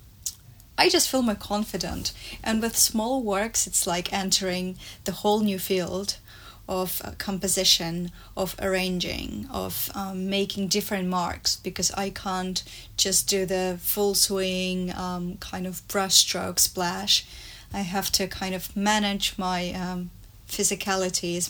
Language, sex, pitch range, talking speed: English, female, 175-195 Hz, 135 wpm